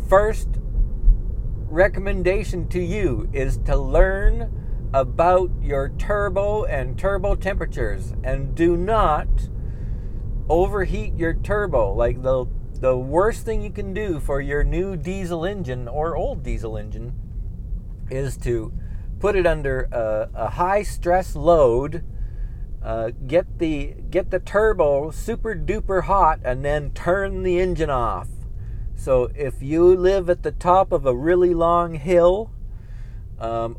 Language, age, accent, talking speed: English, 50-69, American, 130 wpm